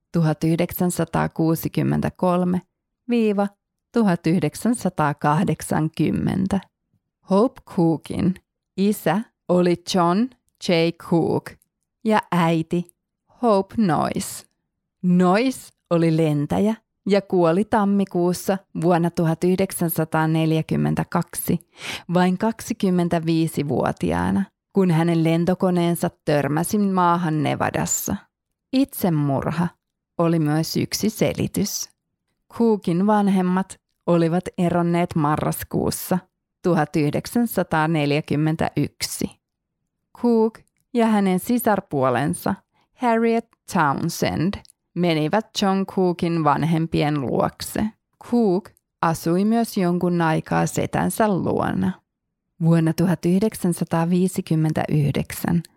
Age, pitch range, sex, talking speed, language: 20-39, 160-195 Hz, female, 65 wpm, Finnish